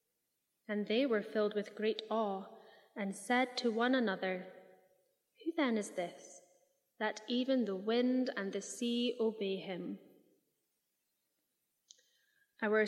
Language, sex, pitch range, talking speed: English, female, 200-235 Hz, 120 wpm